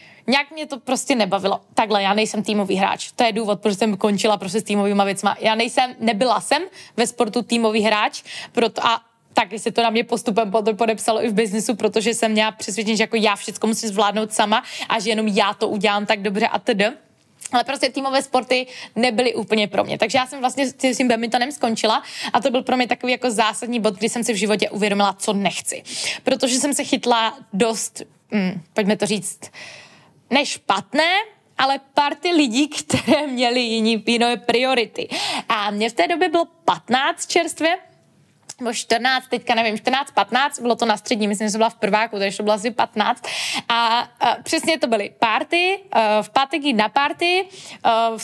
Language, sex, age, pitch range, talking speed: Czech, female, 20-39, 220-265 Hz, 190 wpm